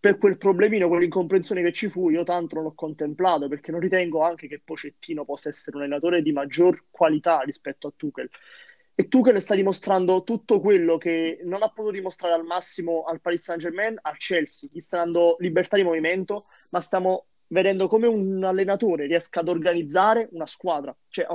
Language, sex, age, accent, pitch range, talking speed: Italian, male, 20-39, native, 160-195 Hz, 185 wpm